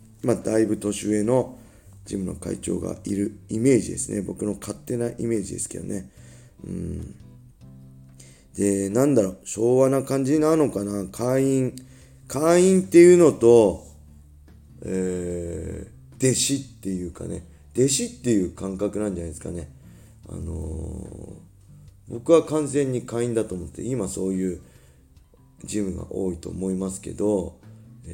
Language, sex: Japanese, male